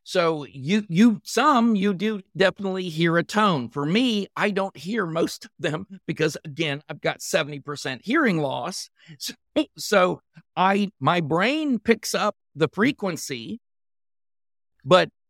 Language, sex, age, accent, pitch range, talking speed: English, male, 50-69, American, 150-215 Hz, 135 wpm